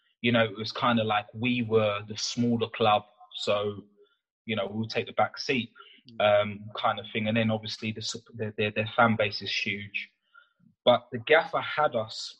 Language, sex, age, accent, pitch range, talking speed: English, male, 20-39, British, 105-120 Hz, 195 wpm